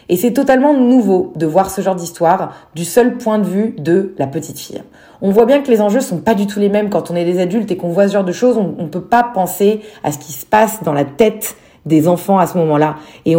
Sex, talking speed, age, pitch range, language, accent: female, 275 wpm, 30-49, 170-220 Hz, French, French